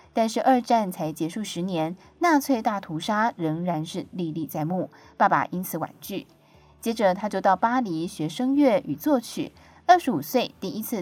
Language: Chinese